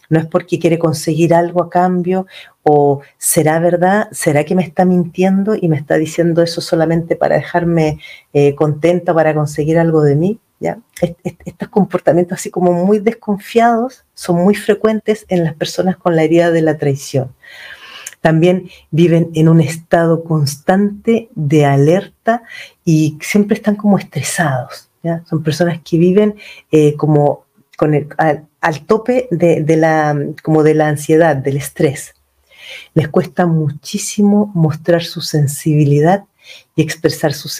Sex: female